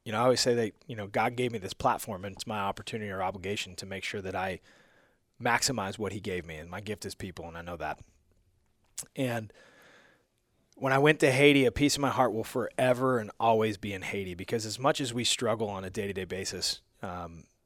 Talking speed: 235 wpm